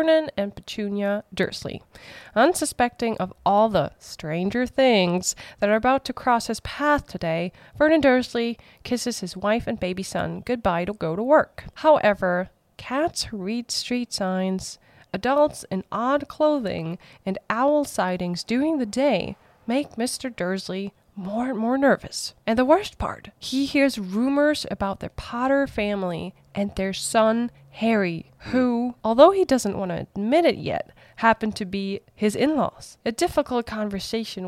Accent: American